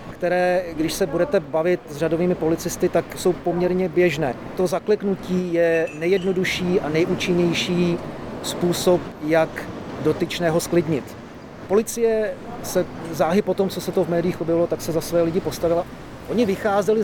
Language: Czech